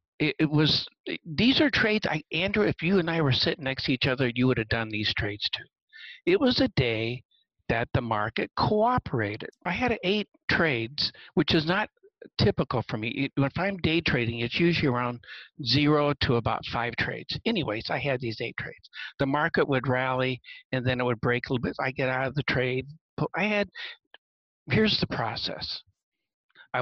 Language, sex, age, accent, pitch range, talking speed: English, male, 60-79, American, 125-170 Hz, 185 wpm